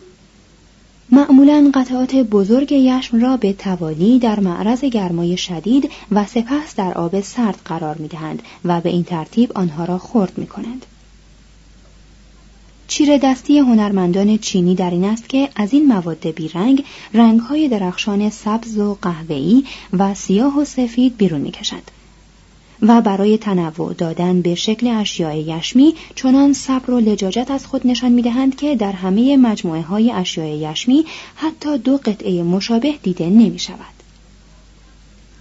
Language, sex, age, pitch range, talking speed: Persian, female, 30-49, 185-255 Hz, 130 wpm